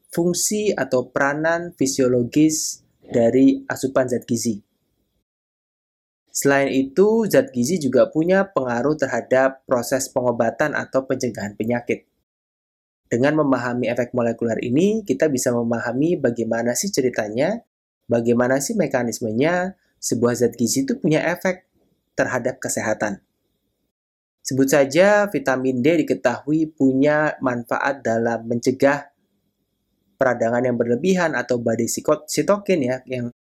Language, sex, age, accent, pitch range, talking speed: Indonesian, male, 20-39, native, 120-150 Hz, 105 wpm